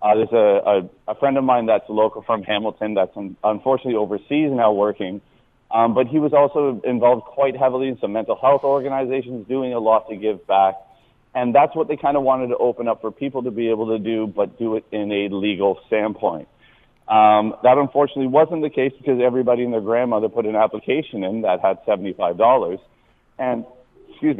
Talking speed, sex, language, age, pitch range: 200 wpm, male, English, 30-49, 105-130 Hz